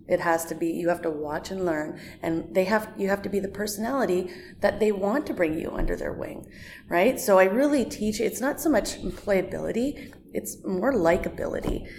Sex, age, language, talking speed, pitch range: female, 30-49, English, 205 wpm, 170-210 Hz